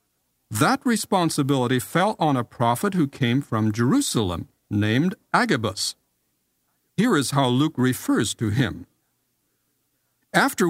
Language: English